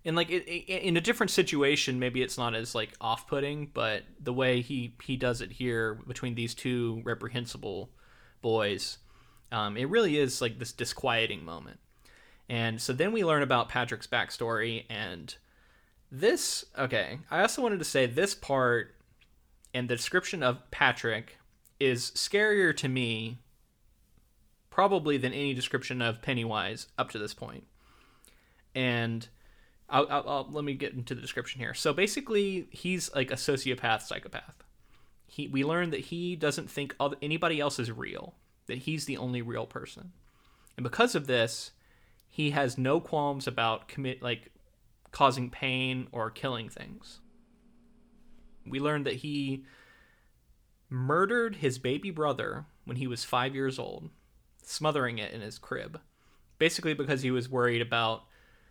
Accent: American